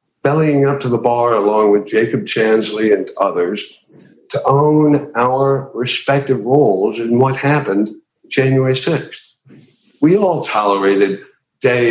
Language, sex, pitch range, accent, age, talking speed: English, male, 105-135 Hz, American, 60-79, 125 wpm